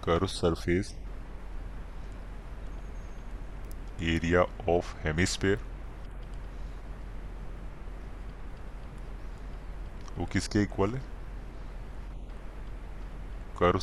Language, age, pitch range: Hindi, 30-49, 85-105 Hz